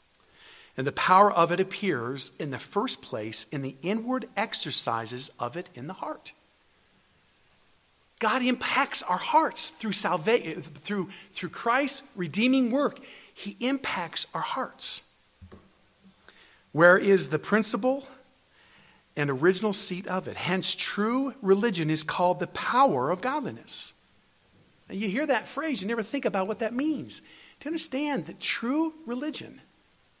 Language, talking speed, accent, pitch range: English, 135 wpm, American, 155-250 Hz